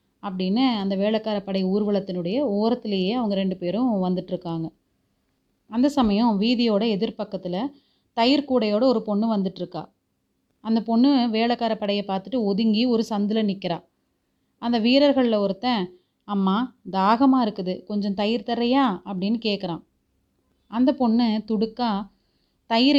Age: 30-49